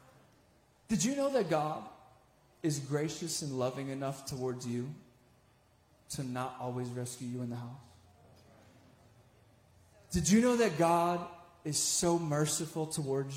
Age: 30-49